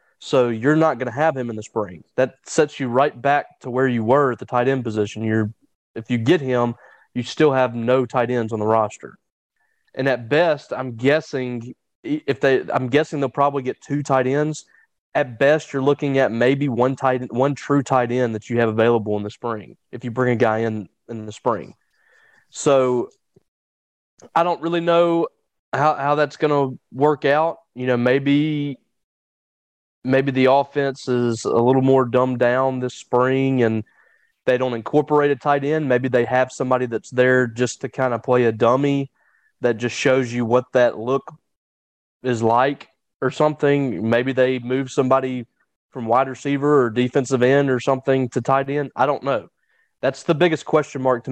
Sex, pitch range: male, 120-140 Hz